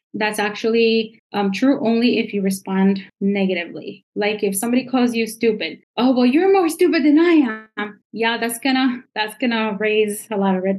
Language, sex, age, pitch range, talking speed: English, female, 20-39, 205-250 Hz, 185 wpm